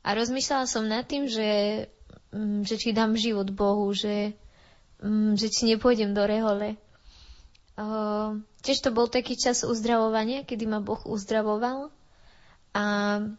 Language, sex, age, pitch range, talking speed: Slovak, female, 20-39, 210-235 Hz, 130 wpm